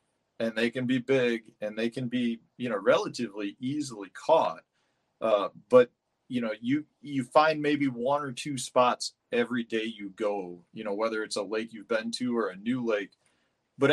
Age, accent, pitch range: 40-59, American, 110-145 Hz